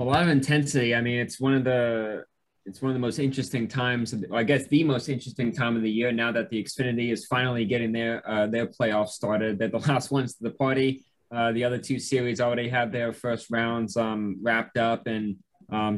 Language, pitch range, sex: English, 115-130 Hz, male